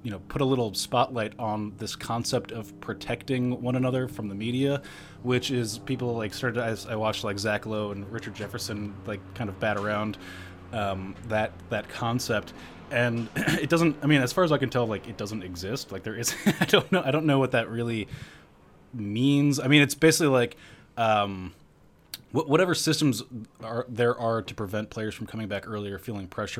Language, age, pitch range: English, 20-39, 105-130 Hz